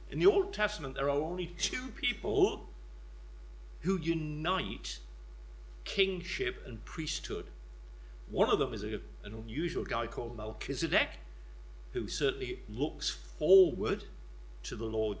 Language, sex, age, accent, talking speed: English, male, 60-79, British, 120 wpm